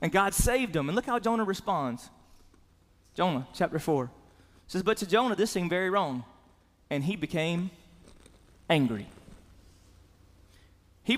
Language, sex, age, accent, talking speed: English, male, 30-49, American, 135 wpm